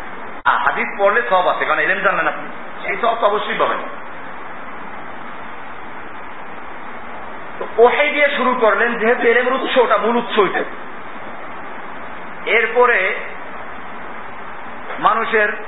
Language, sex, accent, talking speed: Bengali, male, native, 65 wpm